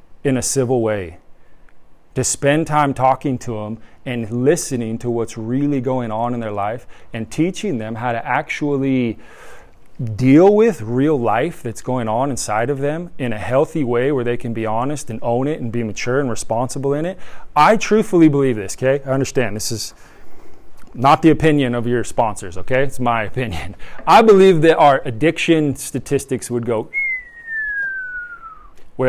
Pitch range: 115-145 Hz